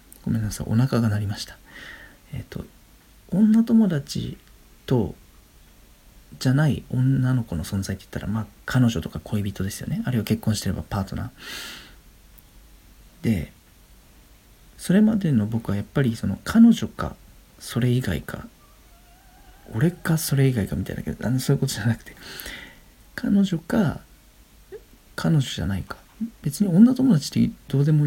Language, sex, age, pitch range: Japanese, male, 40-59, 100-145 Hz